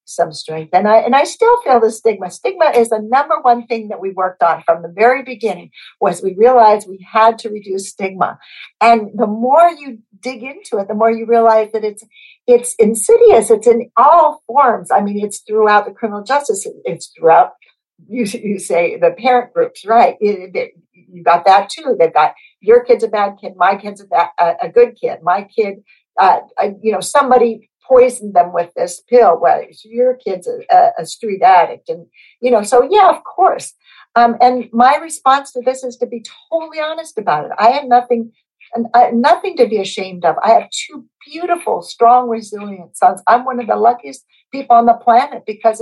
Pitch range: 200-255 Hz